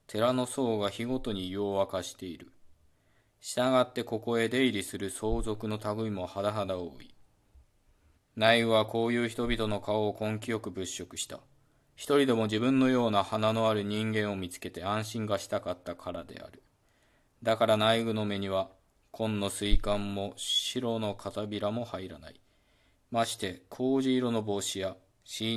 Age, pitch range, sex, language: 20-39, 100-115 Hz, male, Japanese